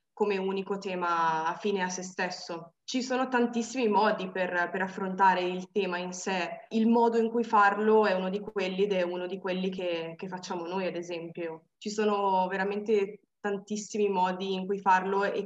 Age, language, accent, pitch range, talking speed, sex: 20-39, Italian, native, 175-200 Hz, 185 wpm, female